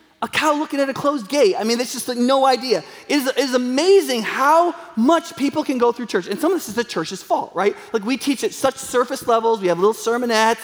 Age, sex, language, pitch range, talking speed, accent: 30-49, male, English, 190-260 Hz, 260 wpm, American